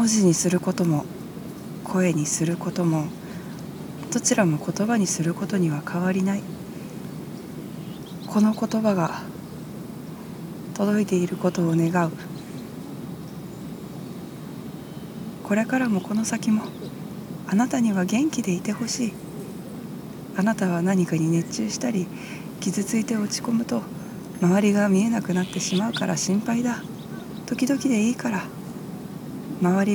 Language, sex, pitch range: Japanese, female, 180-215 Hz